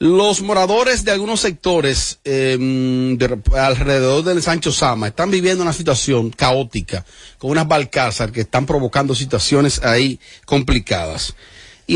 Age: 40-59